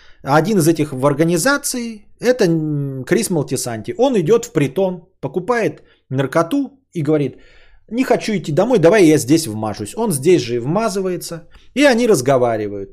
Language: Bulgarian